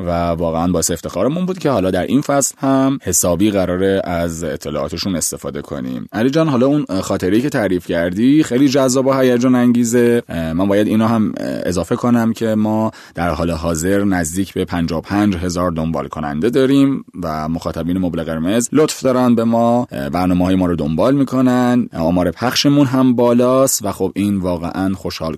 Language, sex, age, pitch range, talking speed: Persian, male, 30-49, 85-120 Hz, 160 wpm